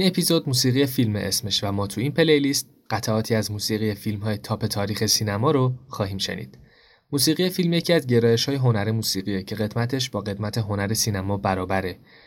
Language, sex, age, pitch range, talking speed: Persian, male, 20-39, 100-125 Hz, 170 wpm